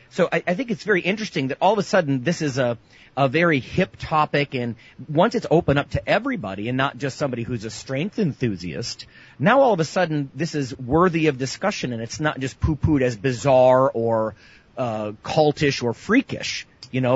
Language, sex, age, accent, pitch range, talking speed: English, male, 30-49, American, 115-155 Hz, 205 wpm